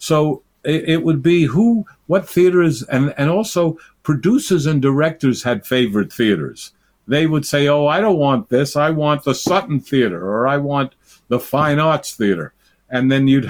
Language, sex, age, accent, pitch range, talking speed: English, male, 50-69, American, 130-160 Hz, 175 wpm